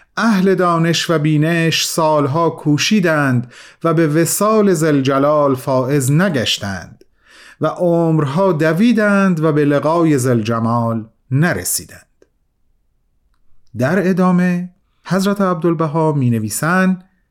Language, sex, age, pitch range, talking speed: Persian, male, 40-59, 140-195 Hz, 90 wpm